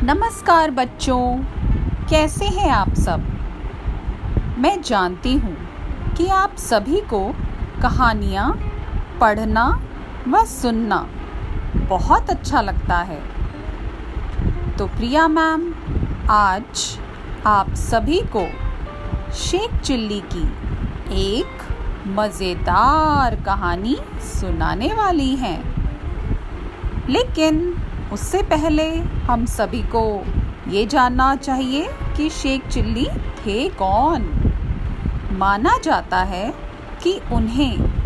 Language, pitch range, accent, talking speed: Hindi, 210-325 Hz, native, 90 wpm